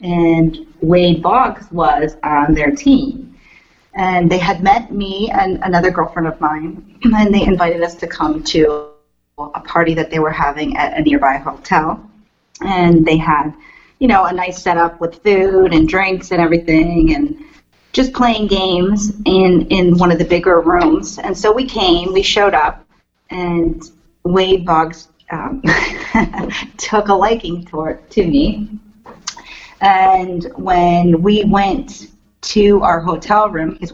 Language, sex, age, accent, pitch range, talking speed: English, female, 30-49, American, 170-240 Hz, 150 wpm